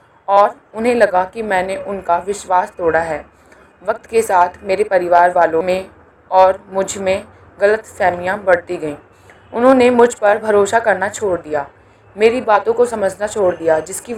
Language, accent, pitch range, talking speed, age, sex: English, Indian, 180-220 Hz, 155 wpm, 20-39, female